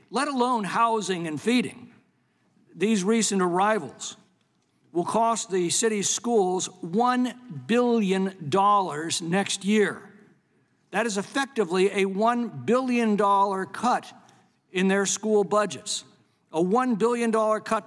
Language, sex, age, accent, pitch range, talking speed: English, male, 60-79, American, 185-220 Hz, 105 wpm